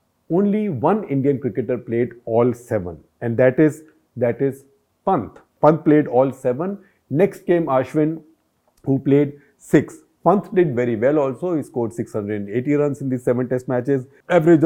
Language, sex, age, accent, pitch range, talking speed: English, male, 50-69, Indian, 120-165 Hz, 155 wpm